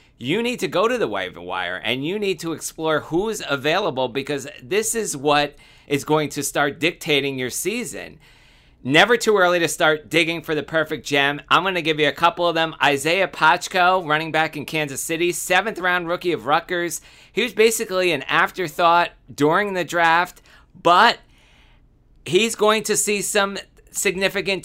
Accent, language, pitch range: American, English, 140-180 Hz